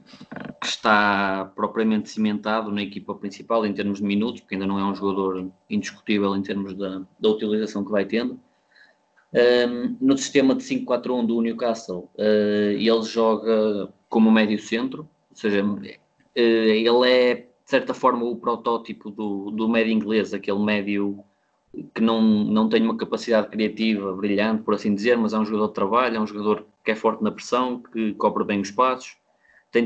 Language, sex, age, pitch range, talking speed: Portuguese, male, 20-39, 105-115 Hz, 175 wpm